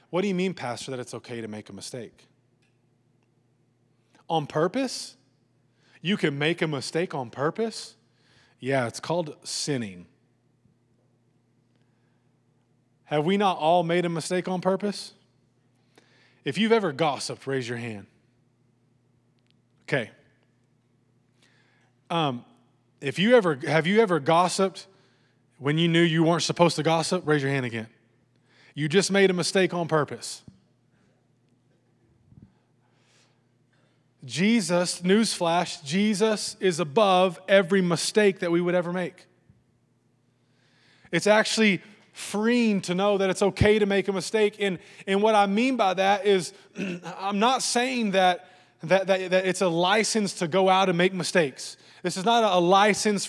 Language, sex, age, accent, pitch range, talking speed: English, male, 20-39, American, 125-195 Hz, 135 wpm